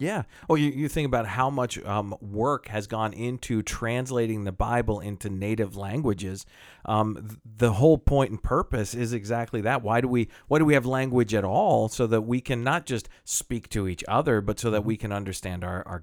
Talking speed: 215 wpm